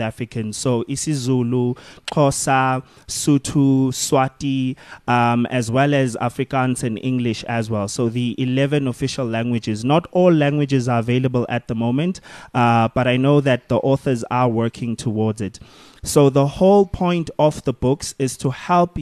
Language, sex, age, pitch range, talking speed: English, male, 20-39, 120-145 Hz, 155 wpm